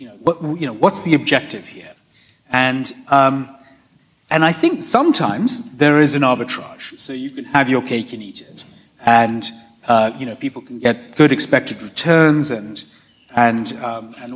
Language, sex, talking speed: English, male, 175 wpm